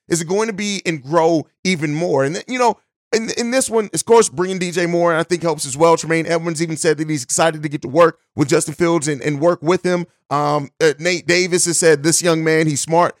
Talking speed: 250 wpm